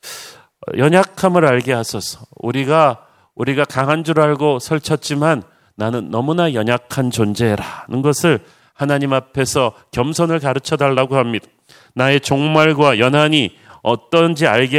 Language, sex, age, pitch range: Korean, male, 40-59, 120-150 Hz